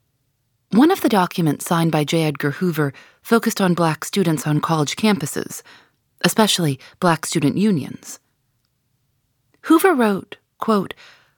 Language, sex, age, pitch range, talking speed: English, female, 30-49, 145-205 Hz, 120 wpm